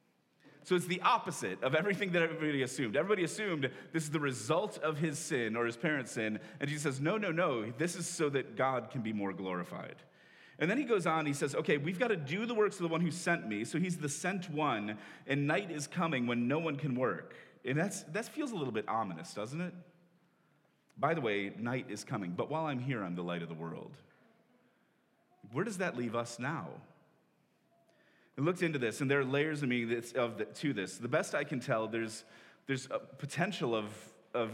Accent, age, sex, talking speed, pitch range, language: American, 30-49, male, 225 wpm, 110-160 Hz, English